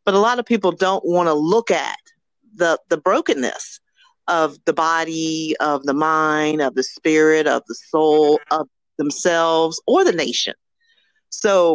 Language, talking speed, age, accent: English, 160 wpm, 40-59, American